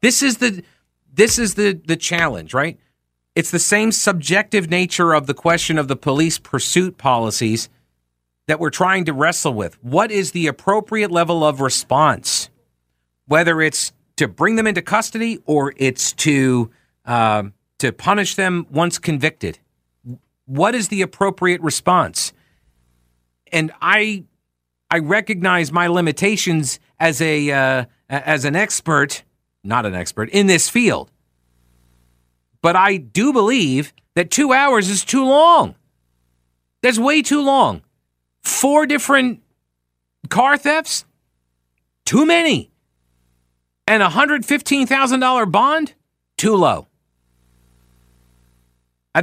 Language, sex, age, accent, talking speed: English, male, 50-69, American, 125 wpm